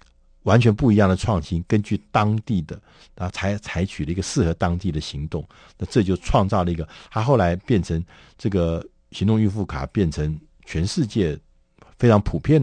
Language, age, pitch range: Chinese, 50-69, 80-115 Hz